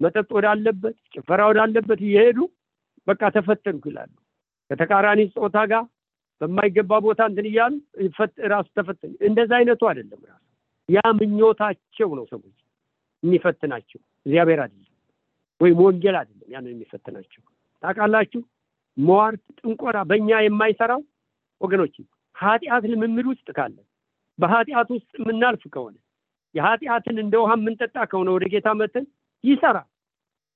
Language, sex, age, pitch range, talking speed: English, male, 60-79, 195-235 Hz, 45 wpm